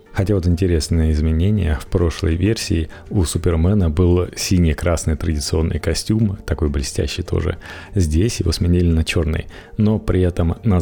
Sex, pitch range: male, 85-105 Hz